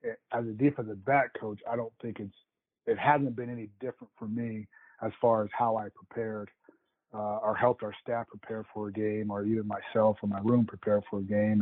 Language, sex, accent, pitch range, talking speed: English, male, American, 105-115 Hz, 210 wpm